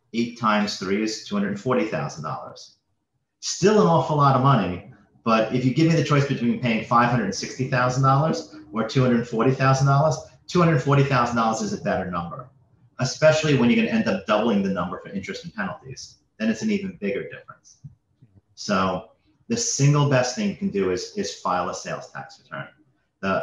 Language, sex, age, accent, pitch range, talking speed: English, male, 40-59, American, 105-140 Hz, 160 wpm